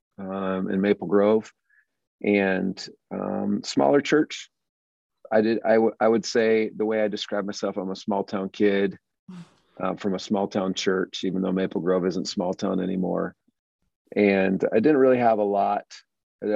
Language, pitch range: English, 95-105 Hz